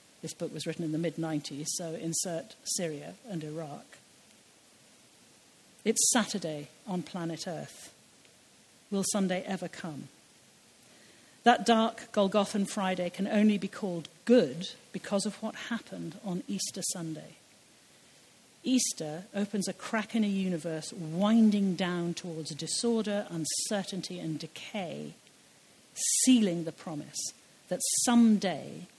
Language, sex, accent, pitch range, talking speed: English, female, British, 160-205 Hz, 115 wpm